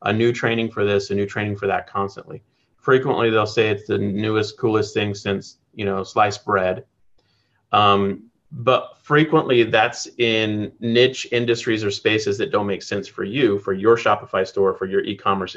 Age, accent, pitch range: 30-49, American, 100-120 Hz